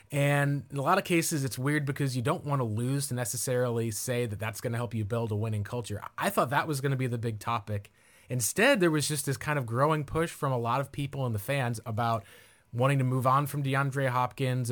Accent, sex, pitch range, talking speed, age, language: American, male, 115-145 Hz, 255 wpm, 30-49, English